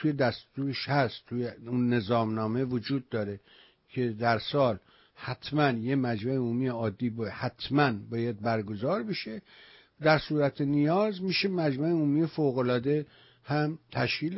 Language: English